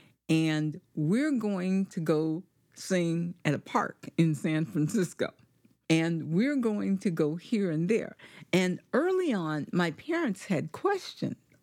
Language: English